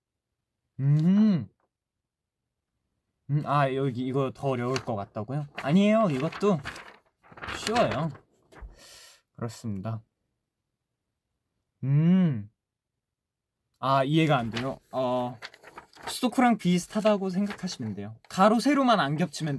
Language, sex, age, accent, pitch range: Korean, male, 20-39, native, 115-160 Hz